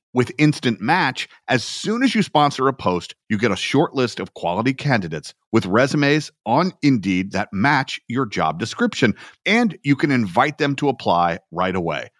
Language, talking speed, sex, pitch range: English, 175 wpm, male, 100-150 Hz